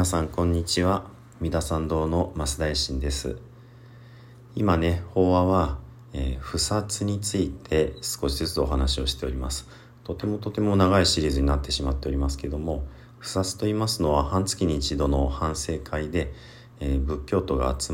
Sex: male